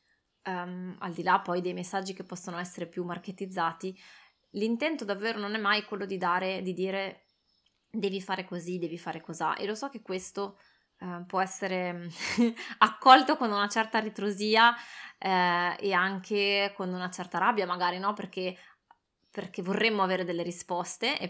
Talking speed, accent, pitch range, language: 155 wpm, native, 180-210 Hz, Italian